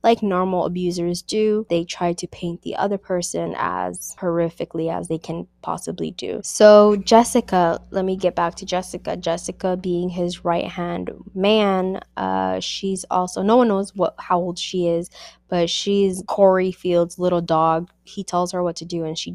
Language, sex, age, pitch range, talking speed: English, female, 20-39, 170-195 Hz, 175 wpm